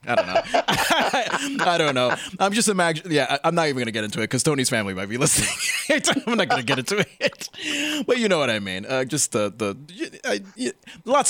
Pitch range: 125-210 Hz